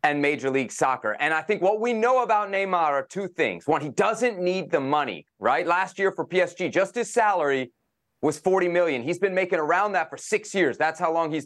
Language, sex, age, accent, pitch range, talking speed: English, male, 30-49, American, 155-190 Hz, 230 wpm